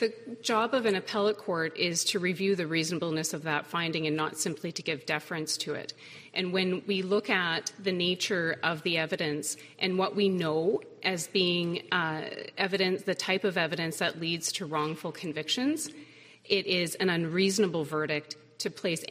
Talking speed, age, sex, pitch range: 175 wpm, 30-49, female, 165-210 Hz